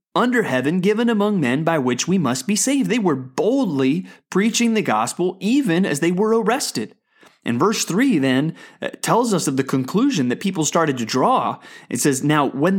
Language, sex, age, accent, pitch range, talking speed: English, male, 30-49, American, 140-210 Hz, 190 wpm